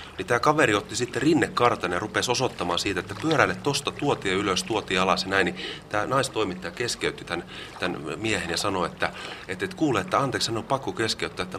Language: Finnish